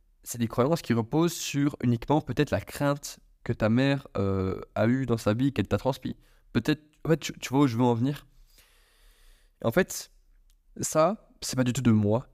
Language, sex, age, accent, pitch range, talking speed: French, male, 20-39, French, 105-135 Hz, 200 wpm